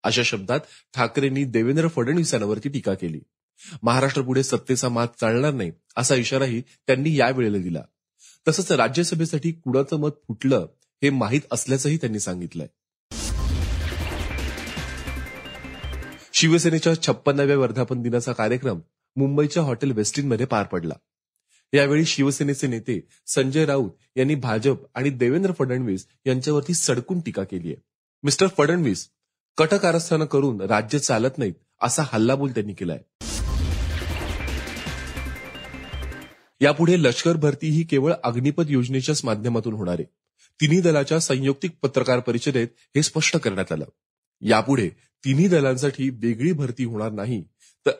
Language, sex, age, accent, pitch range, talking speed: Marathi, male, 30-49, native, 110-145 Hz, 85 wpm